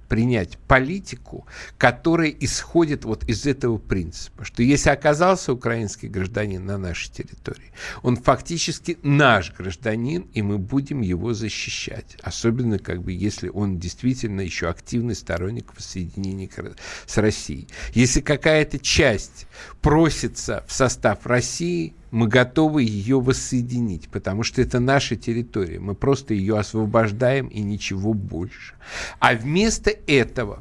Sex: male